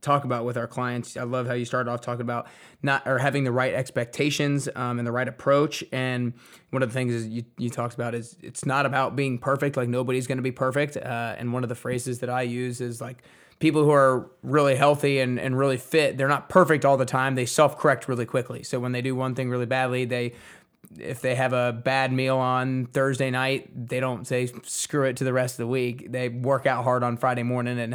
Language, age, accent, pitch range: English, 20-39, American, 120-135 Hz